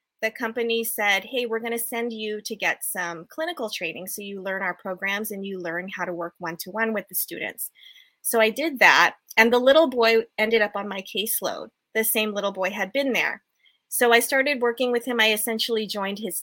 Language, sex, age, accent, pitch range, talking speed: English, female, 20-39, American, 200-240 Hz, 215 wpm